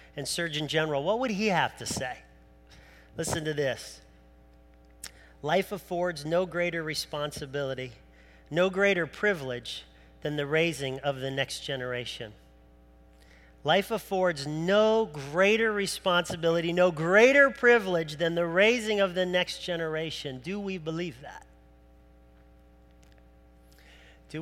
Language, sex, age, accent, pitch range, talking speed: English, male, 40-59, American, 115-175 Hz, 115 wpm